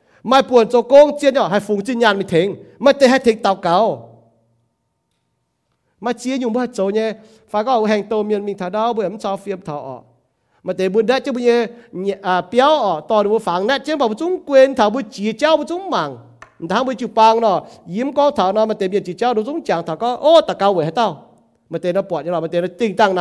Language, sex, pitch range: English, male, 165-245 Hz